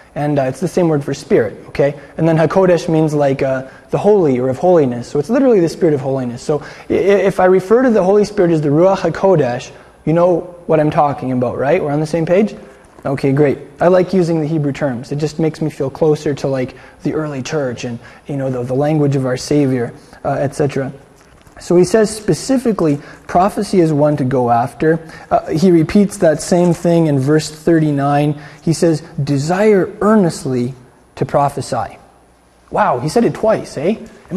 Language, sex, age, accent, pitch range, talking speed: English, male, 20-39, American, 140-180 Hz, 195 wpm